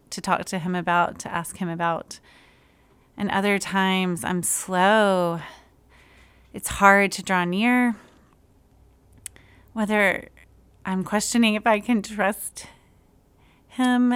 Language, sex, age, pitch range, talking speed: English, female, 30-49, 195-225 Hz, 115 wpm